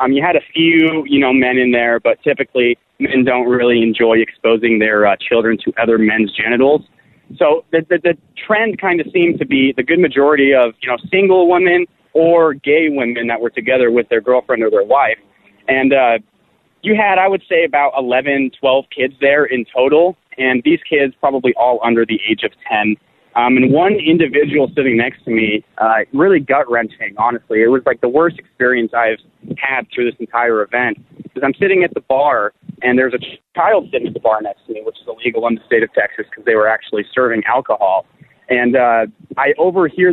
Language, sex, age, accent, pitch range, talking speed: English, male, 30-49, American, 120-165 Hz, 205 wpm